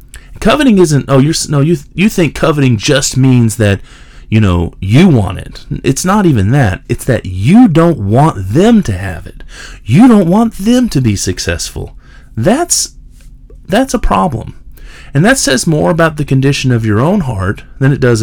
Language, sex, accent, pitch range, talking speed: English, male, American, 115-160 Hz, 180 wpm